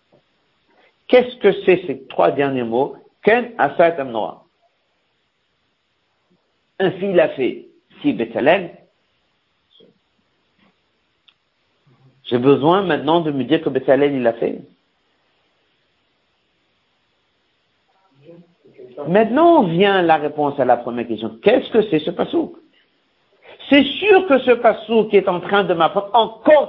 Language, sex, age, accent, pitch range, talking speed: French, male, 50-69, French, 130-190 Hz, 115 wpm